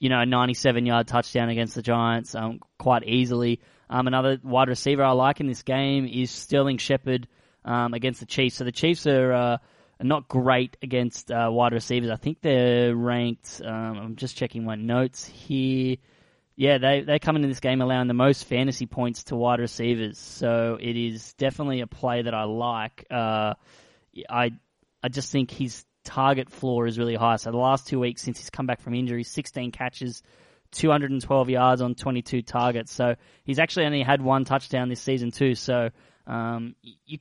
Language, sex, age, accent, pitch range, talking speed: English, male, 10-29, Australian, 120-135 Hz, 185 wpm